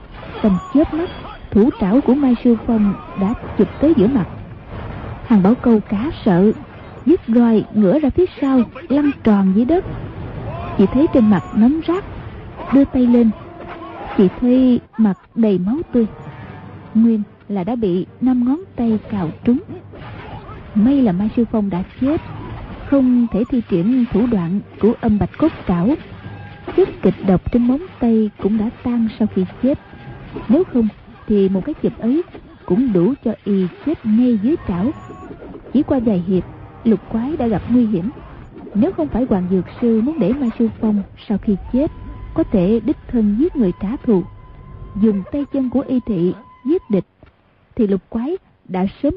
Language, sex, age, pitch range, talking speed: Vietnamese, female, 20-39, 195-255 Hz, 175 wpm